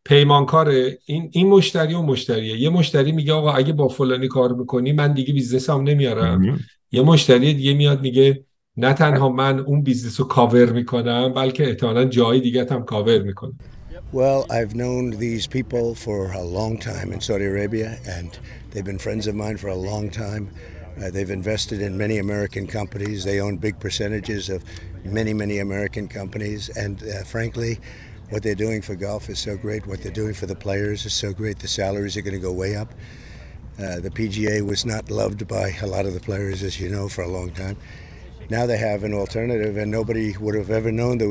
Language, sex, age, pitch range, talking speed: Persian, male, 50-69, 100-120 Hz, 165 wpm